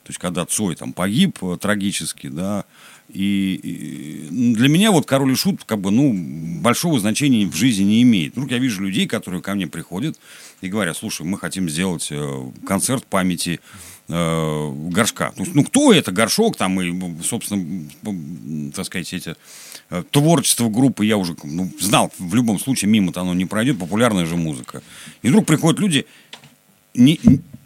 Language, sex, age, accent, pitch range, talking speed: Russian, male, 50-69, native, 90-140 Hz, 170 wpm